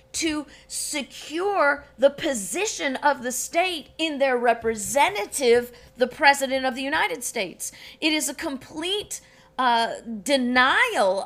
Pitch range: 225-285 Hz